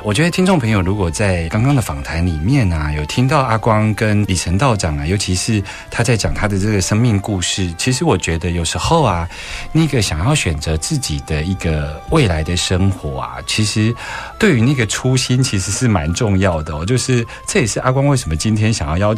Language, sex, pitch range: Chinese, male, 85-125 Hz